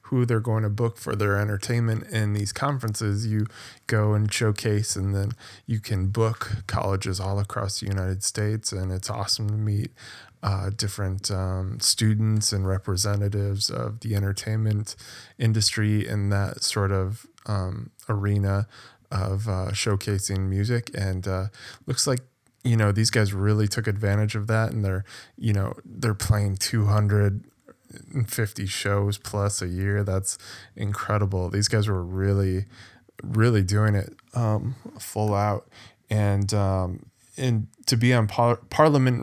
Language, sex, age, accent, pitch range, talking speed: English, male, 20-39, American, 100-115 Hz, 145 wpm